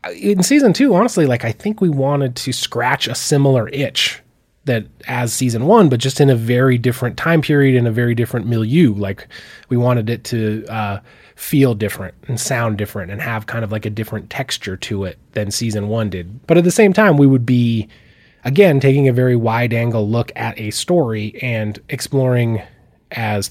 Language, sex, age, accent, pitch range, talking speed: English, male, 20-39, American, 105-125 Hz, 195 wpm